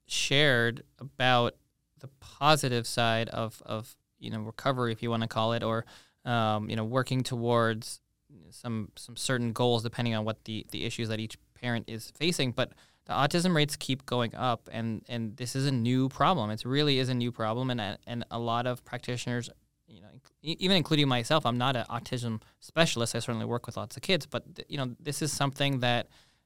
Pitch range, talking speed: 115-135 Hz, 200 wpm